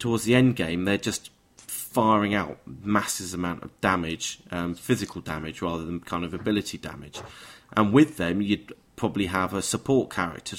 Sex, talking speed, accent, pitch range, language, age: male, 170 wpm, British, 90-110 Hz, English, 30-49